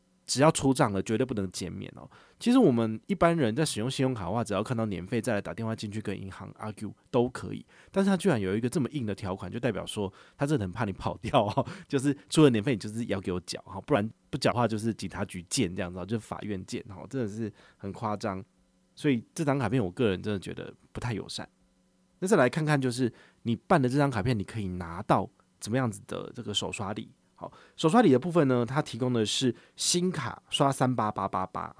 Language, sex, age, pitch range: Chinese, male, 30-49, 100-130 Hz